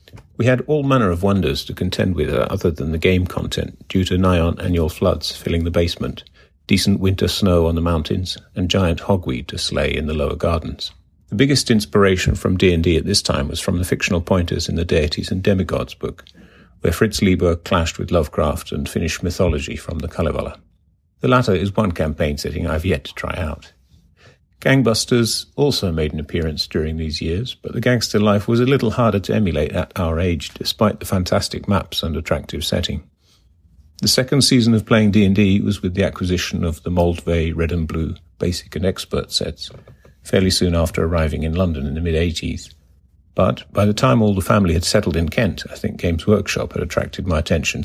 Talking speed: 195 wpm